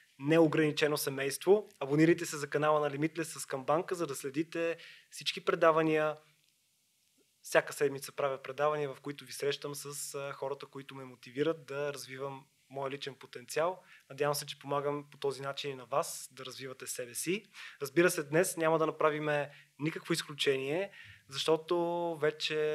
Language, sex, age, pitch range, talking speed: Bulgarian, male, 20-39, 140-155 Hz, 150 wpm